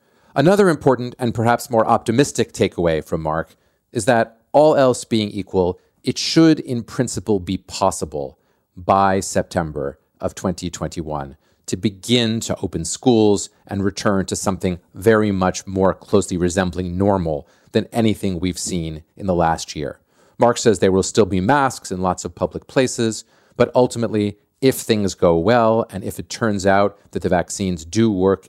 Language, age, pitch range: English, 40-59, 90-110 Hz